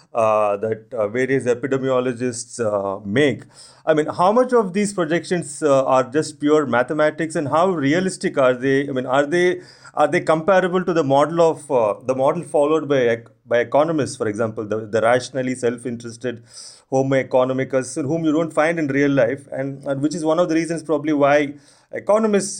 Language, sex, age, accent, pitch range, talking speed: English, male, 30-49, Indian, 130-170 Hz, 180 wpm